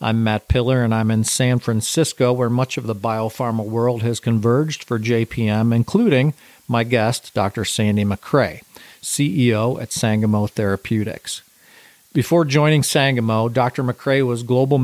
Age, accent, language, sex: 50-69, American, English, male